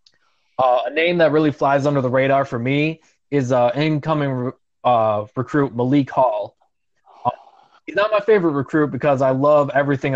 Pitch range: 125-155 Hz